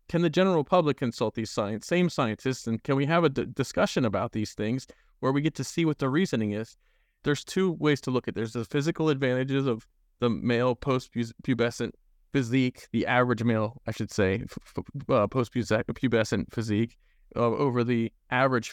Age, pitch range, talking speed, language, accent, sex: 20-39, 115-140 Hz, 175 wpm, English, American, male